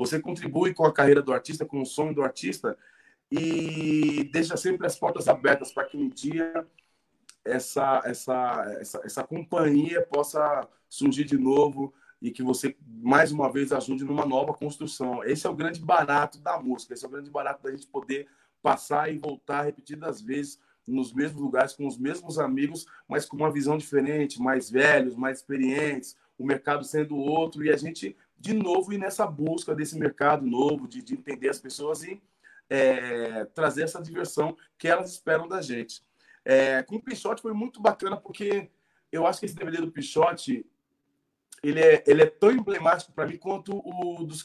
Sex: male